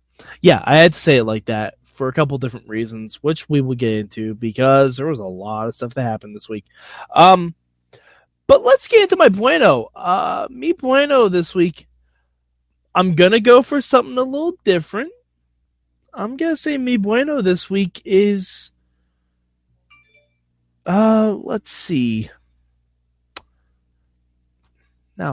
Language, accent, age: English, American, 20-39